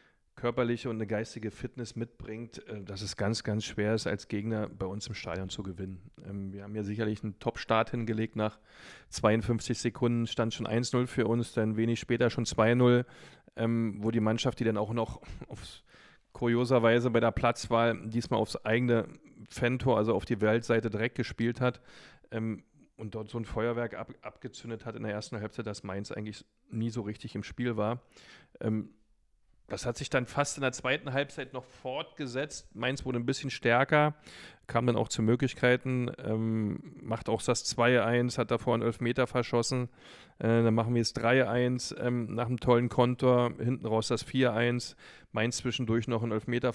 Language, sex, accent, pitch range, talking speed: German, male, German, 110-125 Hz, 170 wpm